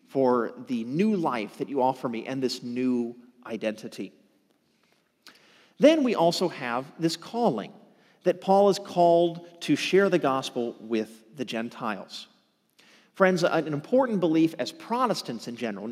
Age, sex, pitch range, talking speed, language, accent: 40-59, male, 130-195 Hz, 140 wpm, English, American